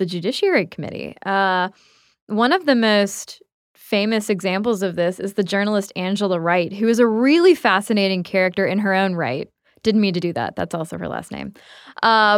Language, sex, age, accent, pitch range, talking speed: English, female, 10-29, American, 190-225 Hz, 185 wpm